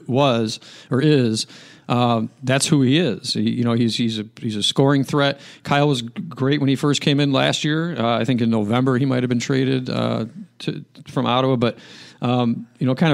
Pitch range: 115-135 Hz